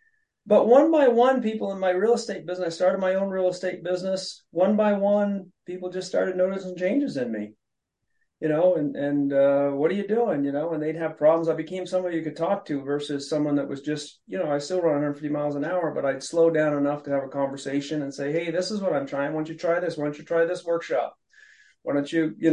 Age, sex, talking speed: 40-59, male, 255 wpm